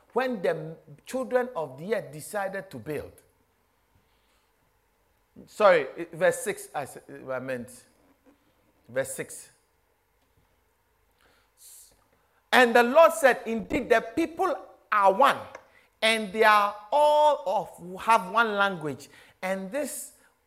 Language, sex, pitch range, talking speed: English, male, 185-265 Hz, 105 wpm